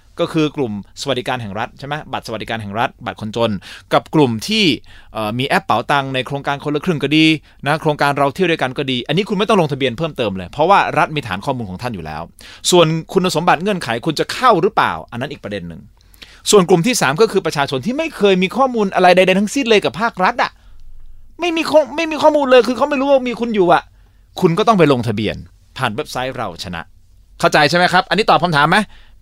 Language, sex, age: Thai, male, 30-49